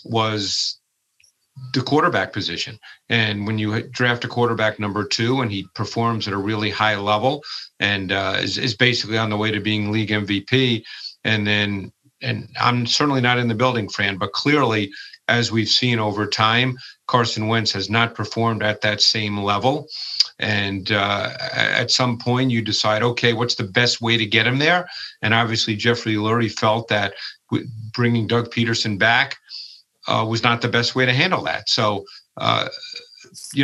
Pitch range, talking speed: 105-125 Hz, 170 wpm